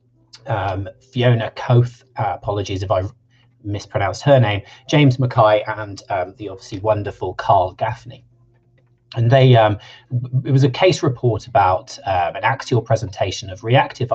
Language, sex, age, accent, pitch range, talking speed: English, male, 40-59, British, 105-130 Hz, 145 wpm